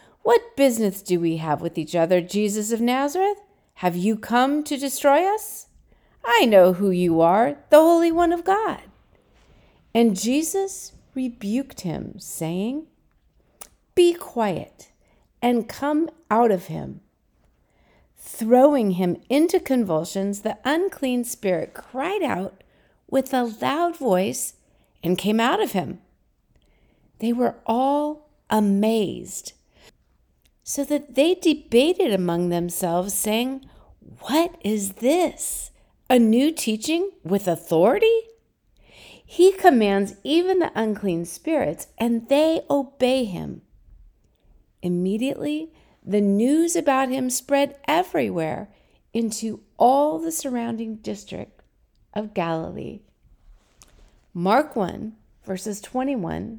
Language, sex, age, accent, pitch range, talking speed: English, female, 50-69, American, 200-295 Hz, 110 wpm